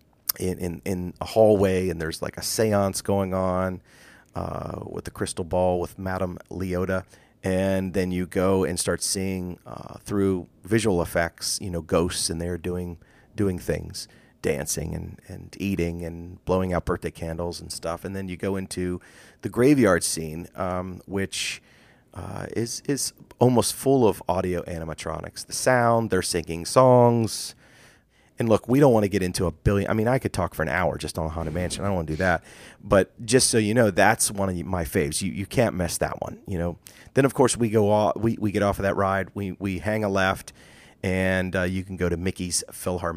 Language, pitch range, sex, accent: English, 90-100 Hz, male, American